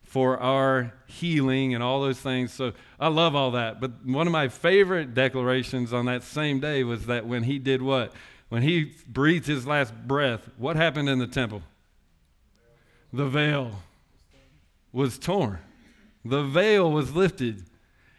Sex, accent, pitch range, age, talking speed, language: male, American, 125-155 Hz, 40-59, 155 wpm, English